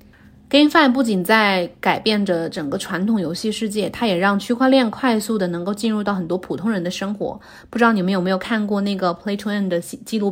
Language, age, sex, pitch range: Chinese, 20-39, female, 185-230 Hz